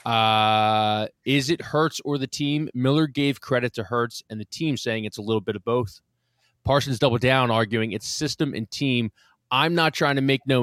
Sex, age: male, 20-39